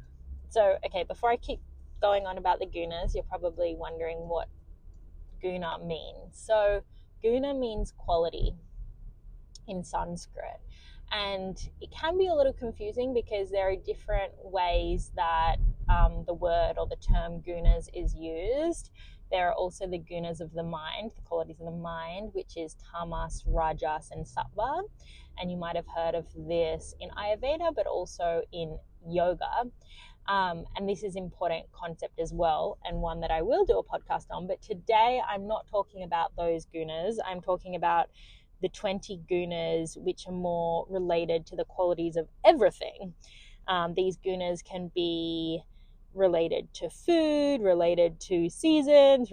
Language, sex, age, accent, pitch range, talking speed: English, female, 20-39, Australian, 165-200 Hz, 155 wpm